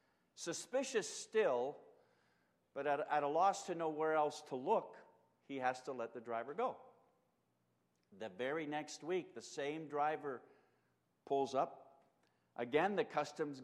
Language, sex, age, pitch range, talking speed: English, male, 50-69, 145-230 Hz, 145 wpm